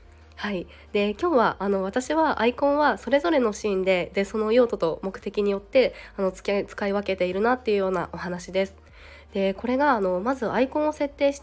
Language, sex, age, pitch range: Japanese, female, 20-39, 185-235 Hz